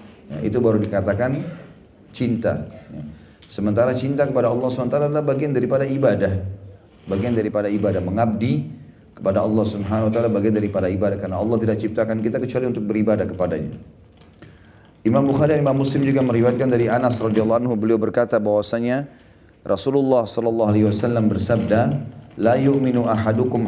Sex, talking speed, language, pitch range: male, 145 wpm, Indonesian, 105-125 Hz